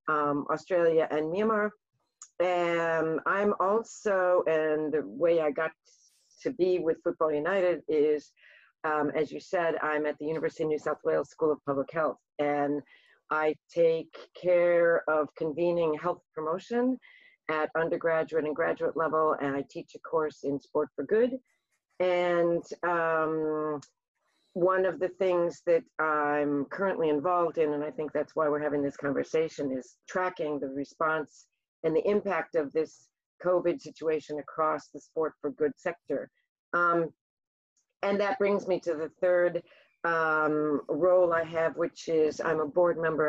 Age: 50-69